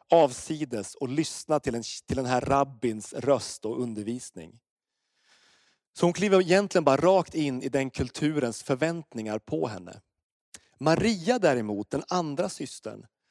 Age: 30-49